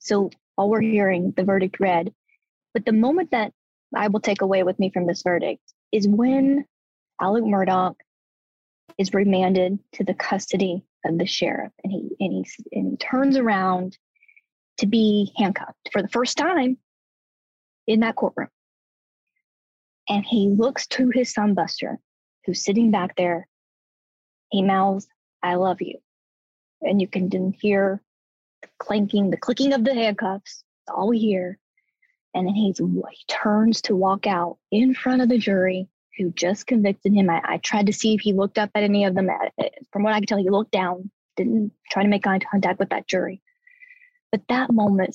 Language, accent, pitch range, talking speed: English, American, 190-230 Hz, 175 wpm